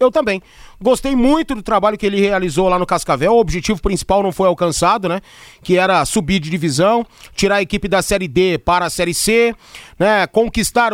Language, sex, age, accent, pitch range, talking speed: Portuguese, male, 30-49, Brazilian, 195-275 Hz, 195 wpm